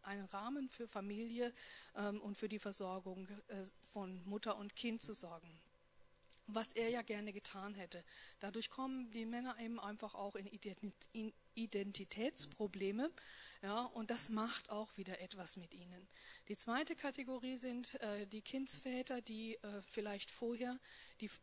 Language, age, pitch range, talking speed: German, 40-59, 200-245 Hz, 145 wpm